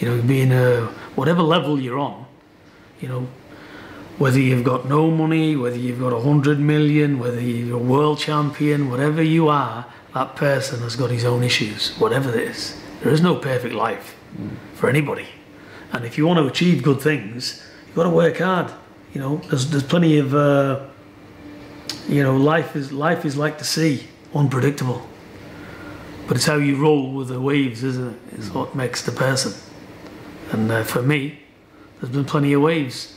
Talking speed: 180 wpm